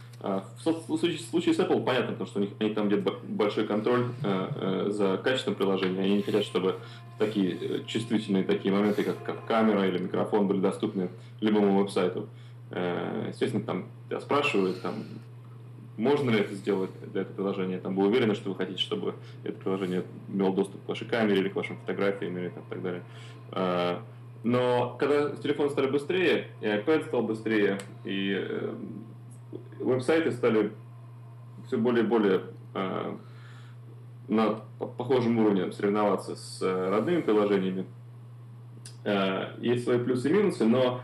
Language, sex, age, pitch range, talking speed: Russian, male, 20-39, 100-120 Hz, 140 wpm